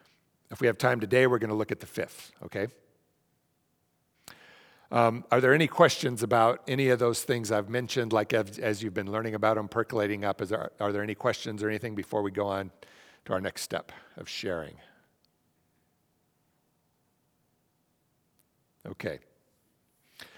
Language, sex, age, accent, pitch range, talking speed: English, male, 60-79, American, 105-130 Hz, 150 wpm